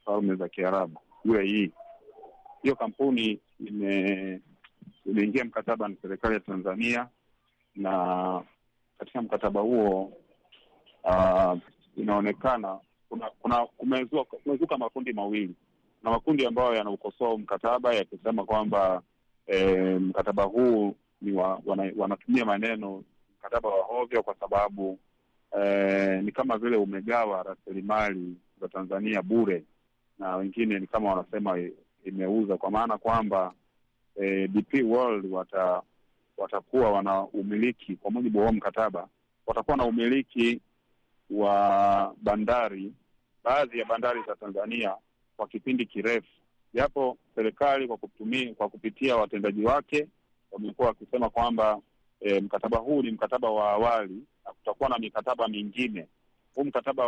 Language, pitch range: Swahili, 95-120 Hz